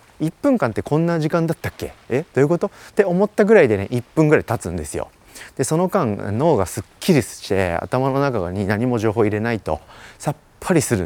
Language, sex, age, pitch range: Japanese, male, 30-49, 95-145 Hz